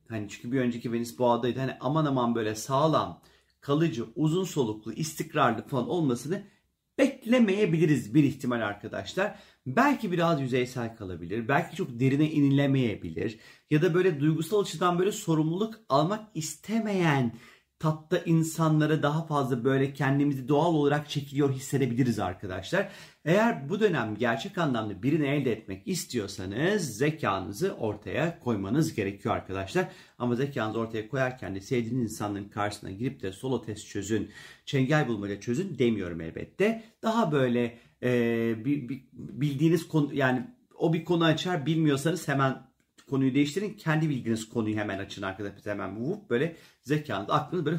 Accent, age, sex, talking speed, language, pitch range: native, 40-59, male, 135 wpm, Turkish, 115-165 Hz